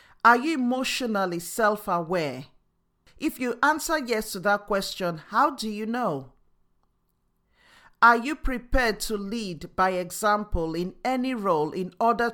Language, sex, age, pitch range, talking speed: English, male, 50-69, 185-235 Hz, 130 wpm